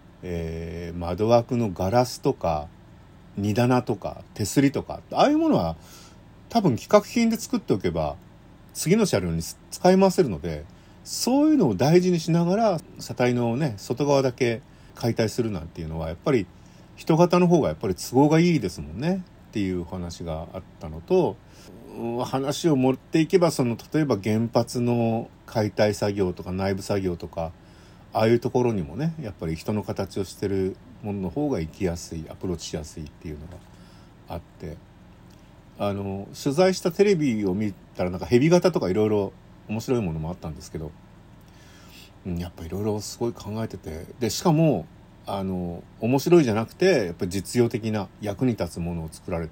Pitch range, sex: 90-140 Hz, male